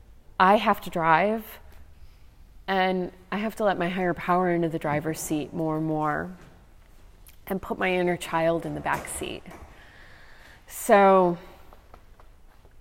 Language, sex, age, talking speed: English, female, 30-49, 135 wpm